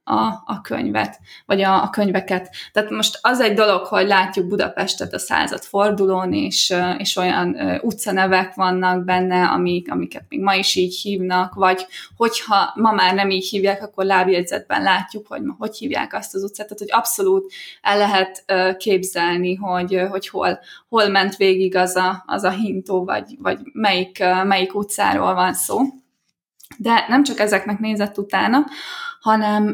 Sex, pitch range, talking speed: female, 190-230 Hz, 150 wpm